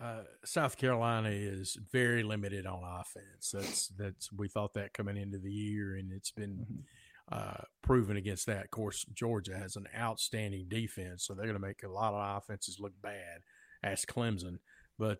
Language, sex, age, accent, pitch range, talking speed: English, male, 40-59, American, 105-125 Hz, 180 wpm